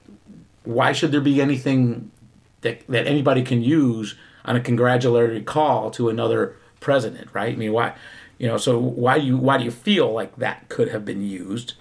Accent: American